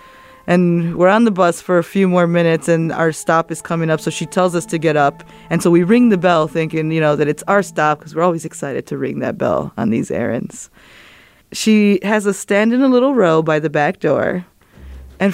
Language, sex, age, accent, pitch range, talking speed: English, female, 20-39, American, 160-220 Hz, 235 wpm